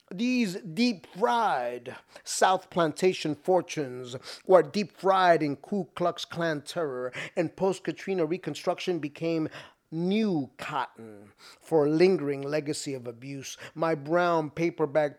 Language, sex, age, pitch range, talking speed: English, male, 30-49, 140-185 Hz, 105 wpm